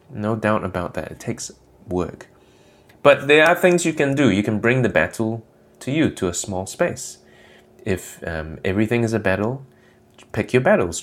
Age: 30-49